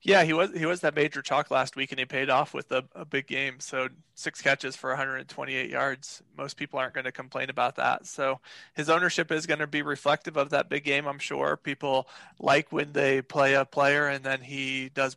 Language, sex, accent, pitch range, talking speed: English, male, American, 135-145 Hz, 230 wpm